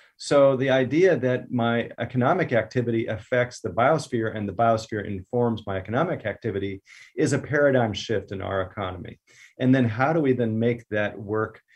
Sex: male